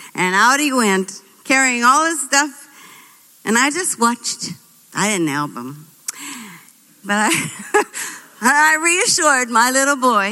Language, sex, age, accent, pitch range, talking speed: English, female, 50-69, American, 185-265 Hz, 135 wpm